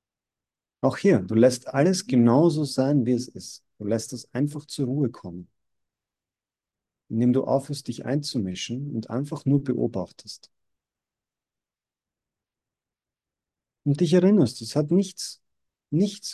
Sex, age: male, 50-69